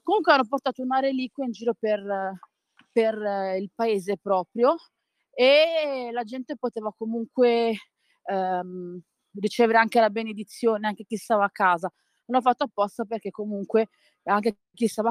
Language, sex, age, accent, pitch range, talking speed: Italian, female, 30-49, native, 195-255 Hz, 135 wpm